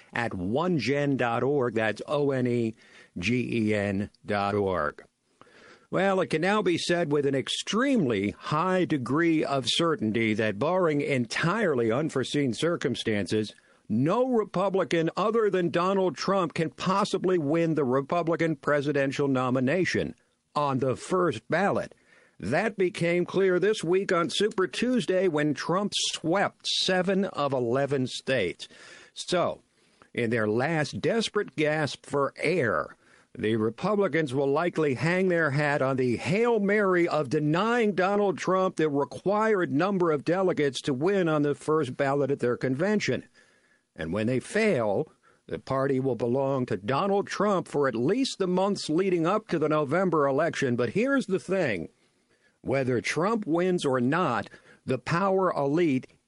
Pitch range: 130-185 Hz